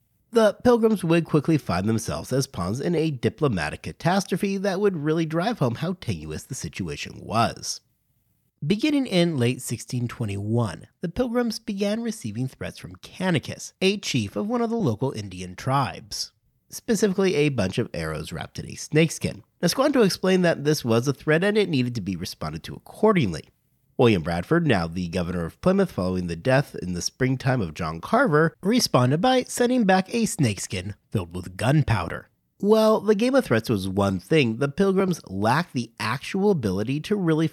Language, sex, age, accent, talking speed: English, male, 40-59, American, 170 wpm